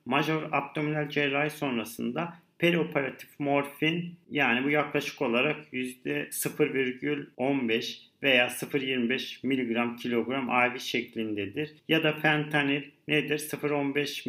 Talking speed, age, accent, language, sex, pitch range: 95 wpm, 50-69, native, Turkish, male, 135-155 Hz